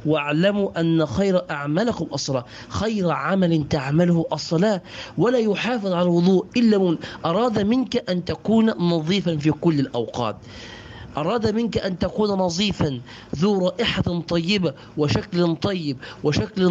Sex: male